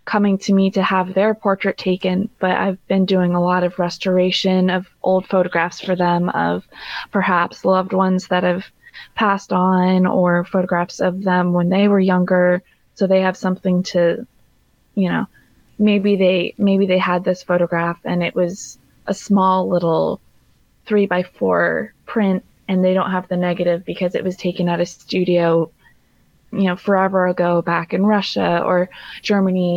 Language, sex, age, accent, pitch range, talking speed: English, female, 20-39, American, 180-200 Hz, 165 wpm